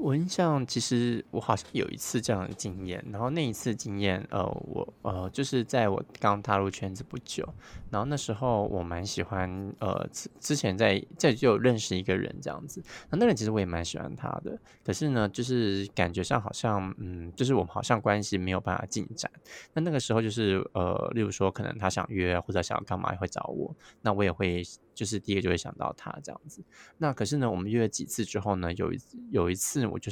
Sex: male